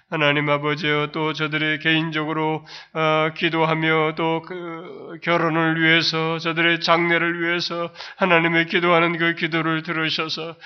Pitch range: 160-185 Hz